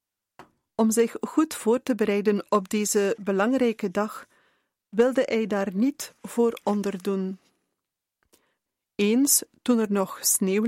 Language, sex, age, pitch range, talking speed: Dutch, female, 40-59, 200-240 Hz, 120 wpm